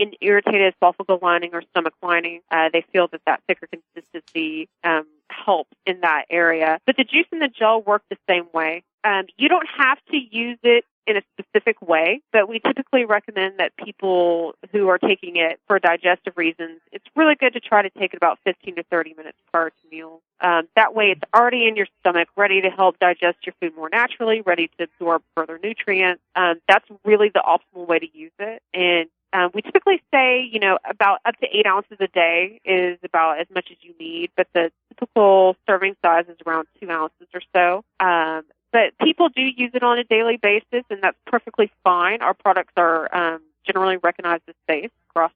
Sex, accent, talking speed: female, American, 205 wpm